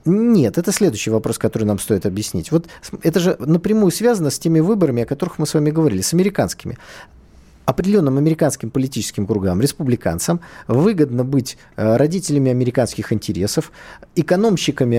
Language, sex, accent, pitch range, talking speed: Russian, male, native, 120-170 Hz, 140 wpm